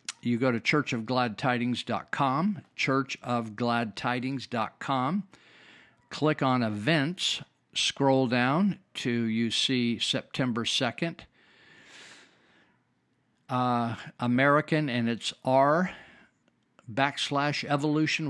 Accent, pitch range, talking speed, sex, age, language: American, 115-135 Hz, 70 wpm, male, 50-69, English